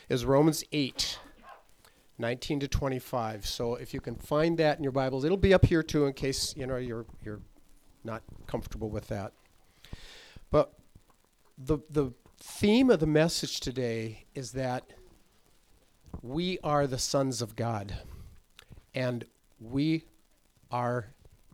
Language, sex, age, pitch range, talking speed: English, male, 50-69, 115-145 Hz, 130 wpm